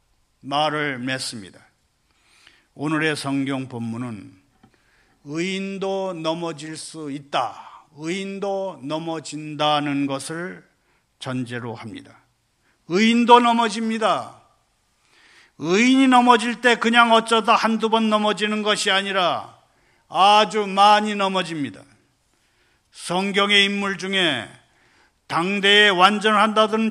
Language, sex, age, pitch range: Korean, male, 50-69, 165-225 Hz